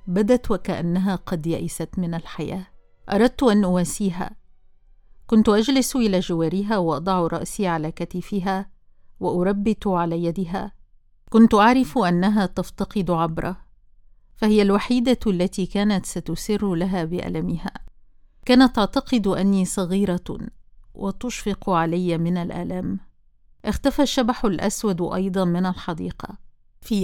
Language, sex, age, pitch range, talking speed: Arabic, female, 50-69, 170-215 Hz, 105 wpm